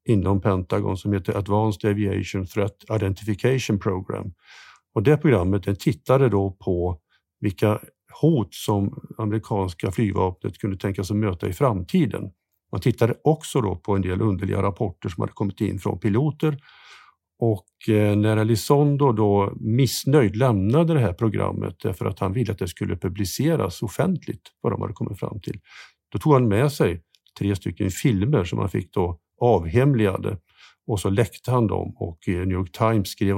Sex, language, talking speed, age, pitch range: male, Swedish, 160 wpm, 50-69, 100-120 Hz